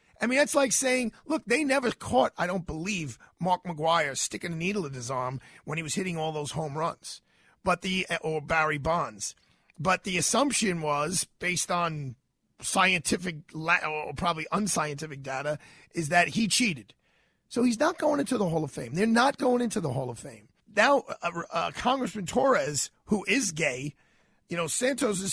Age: 30-49